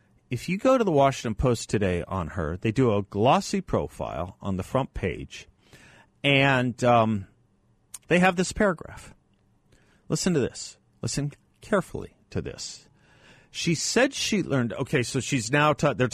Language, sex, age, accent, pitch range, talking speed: English, male, 40-59, American, 95-120 Hz, 150 wpm